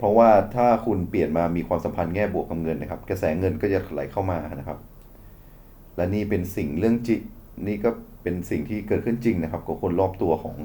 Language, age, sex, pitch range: Thai, 30-49, male, 90-105 Hz